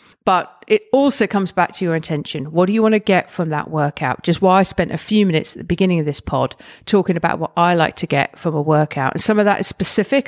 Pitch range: 165-220 Hz